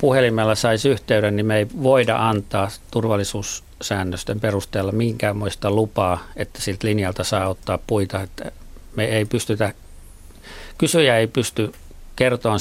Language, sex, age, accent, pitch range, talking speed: Finnish, male, 50-69, native, 100-115 Hz, 125 wpm